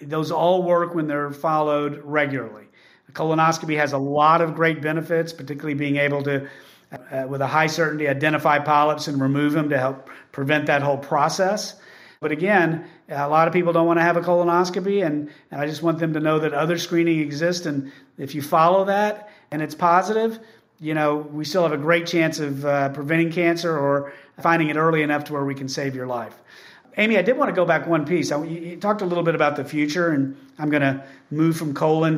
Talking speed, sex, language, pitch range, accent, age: 210 wpm, male, English, 145-170 Hz, American, 40-59